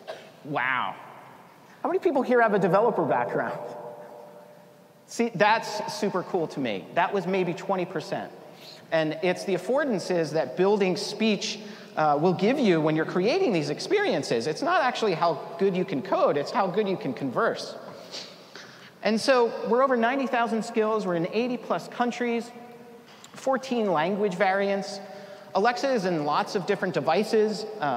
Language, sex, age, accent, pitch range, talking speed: English, male, 40-59, American, 170-235 Hz, 150 wpm